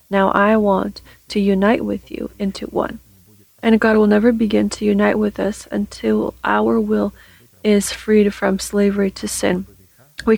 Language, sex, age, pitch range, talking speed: English, female, 30-49, 180-210 Hz, 160 wpm